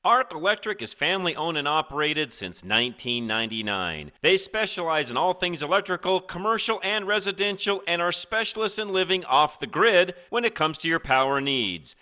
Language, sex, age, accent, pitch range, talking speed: English, male, 40-59, American, 145-210 Hz, 165 wpm